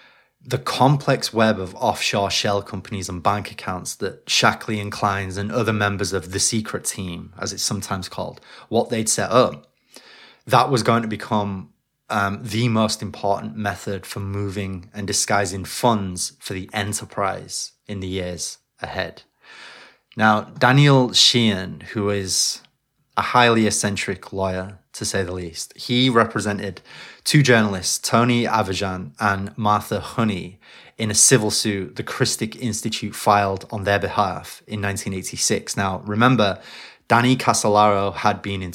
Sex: male